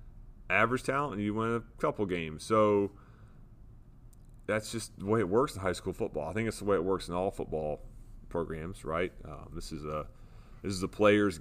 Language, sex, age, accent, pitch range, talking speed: English, male, 30-49, American, 90-115 Hz, 205 wpm